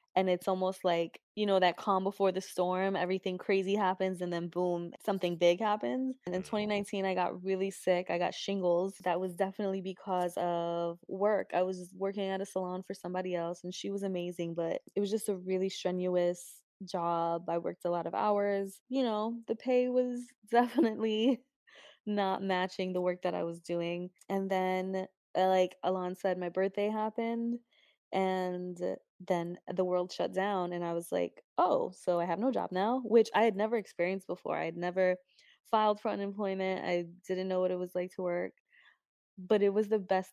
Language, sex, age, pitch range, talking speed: English, female, 20-39, 180-200 Hz, 190 wpm